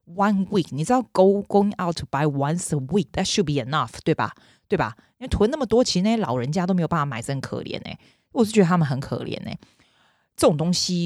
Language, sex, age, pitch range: Chinese, female, 20-39, 140-180 Hz